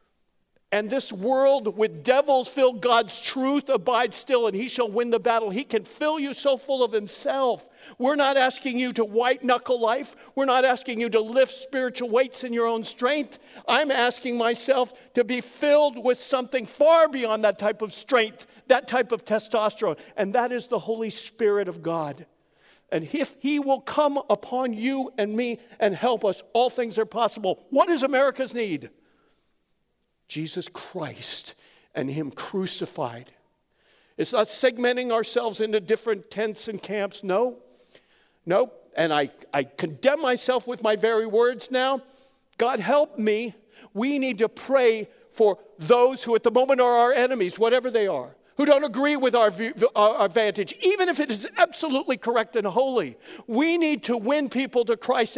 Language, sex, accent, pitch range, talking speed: English, male, American, 220-265 Hz, 170 wpm